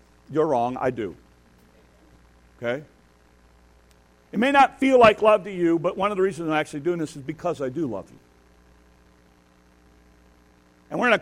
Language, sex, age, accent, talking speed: English, male, 50-69, American, 170 wpm